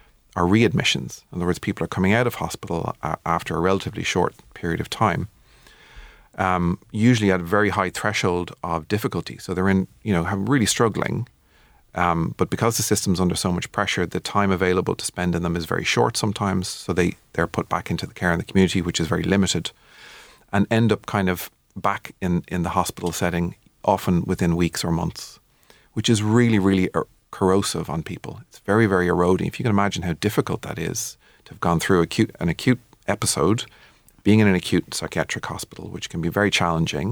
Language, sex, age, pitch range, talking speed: English, male, 40-59, 85-105 Hz, 200 wpm